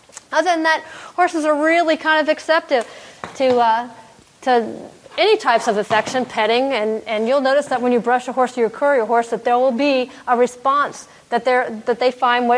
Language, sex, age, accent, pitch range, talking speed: English, female, 30-49, American, 220-265 Hz, 200 wpm